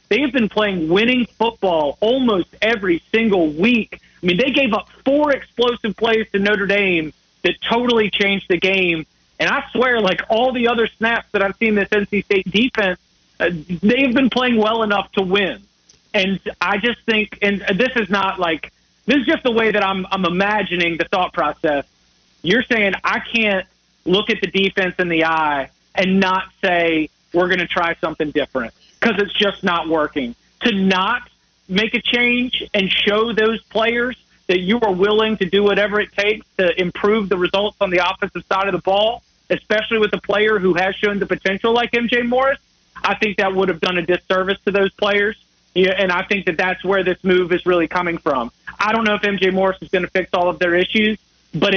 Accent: American